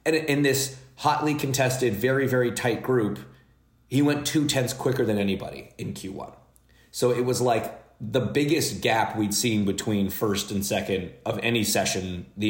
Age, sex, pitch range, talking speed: 30-49, male, 100-125 Hz, 170 wpm